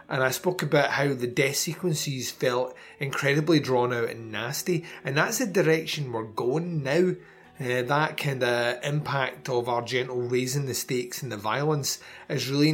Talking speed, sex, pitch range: 175 wpm, male, 125-155 Hz